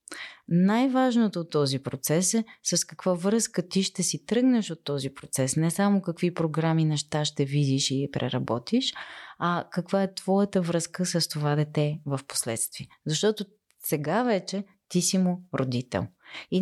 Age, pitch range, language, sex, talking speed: 20-39, 150-190 Hz, Bulgarian, female, 150 wpm